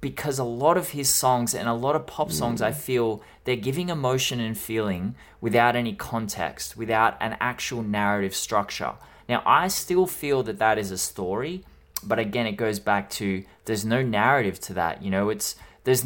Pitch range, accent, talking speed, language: 95-120 Hz, Australian, 190 wpm, English